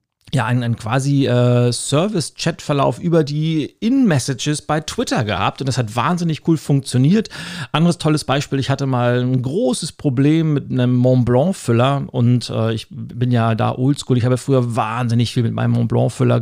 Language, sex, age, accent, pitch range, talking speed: German, male, 40-59, German, 125-155 Hz, 165 wpm